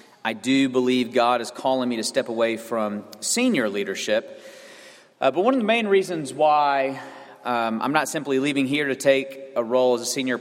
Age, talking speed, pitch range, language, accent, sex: 40-59, 195 wpm, 115-140 Hz, English, American, male